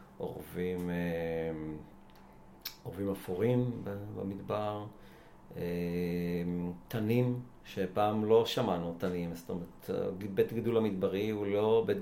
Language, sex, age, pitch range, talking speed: Hebrew, male, 50-69, 90-105 Hz, 80 wpm